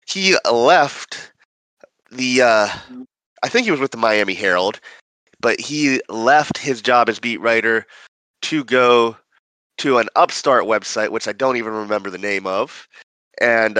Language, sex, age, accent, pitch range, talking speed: English, male, 30-49, American, 100-135 Hz, 150 wpm